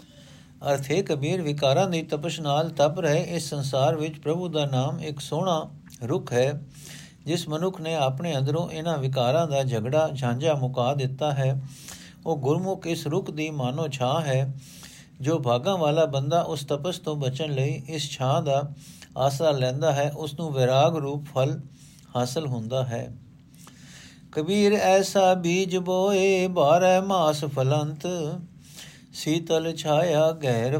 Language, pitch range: Punjabi, 135-160 Hz